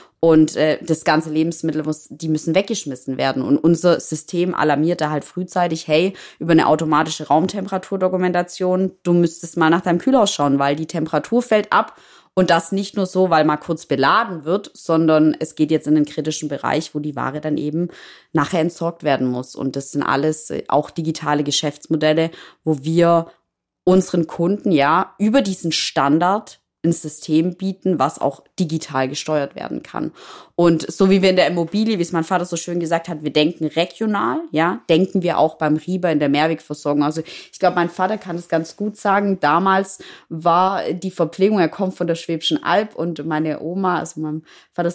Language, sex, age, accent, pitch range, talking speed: German, female, 20-39, German, 155-185 Hz, 185 wpm